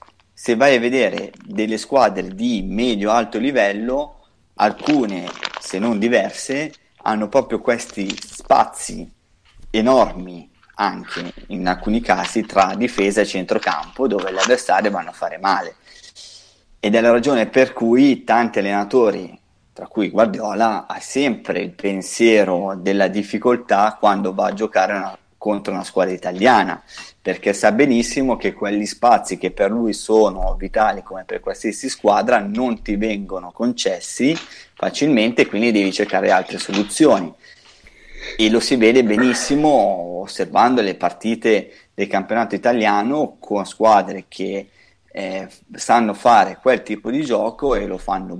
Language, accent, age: Italian, native, 30-49